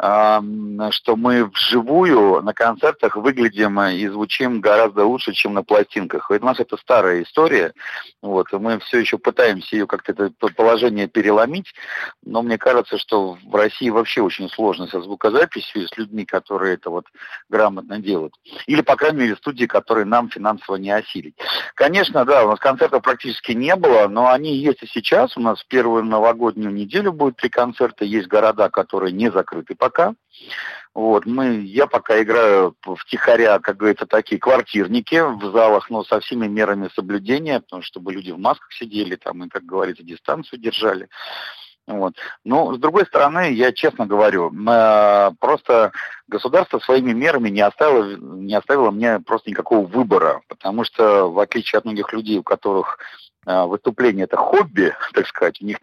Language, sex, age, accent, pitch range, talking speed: Russian, male, 50-69, native, 105-120 Hz, 160 wpm